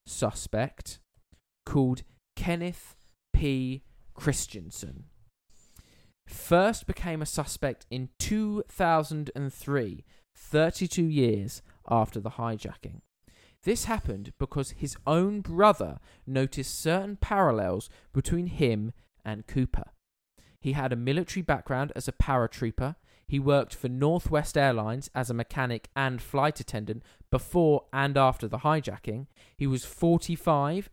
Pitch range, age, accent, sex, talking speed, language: 120-160 Hz, 20-39, British, male, 110 wpm, English